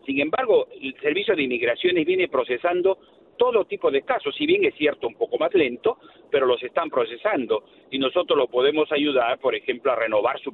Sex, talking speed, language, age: male, 195 wpm, English, 50-69